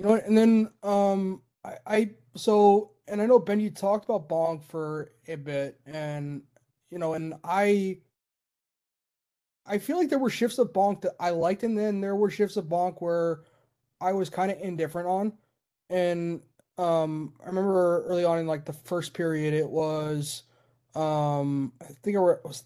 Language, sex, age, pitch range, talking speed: English, male, 20-39, 150-190 Hz, 175 wpm